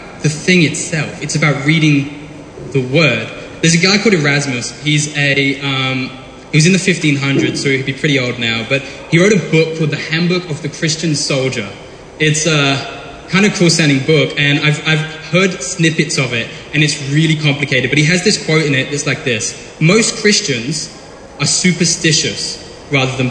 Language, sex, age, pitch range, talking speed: English, male, 10-29, 145-180 Hz, 190 wpm